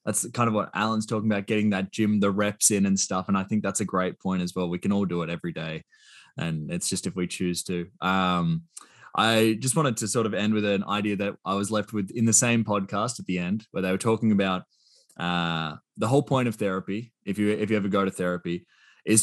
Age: 20-39